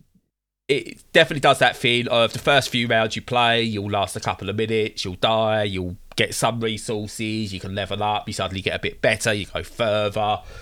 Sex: male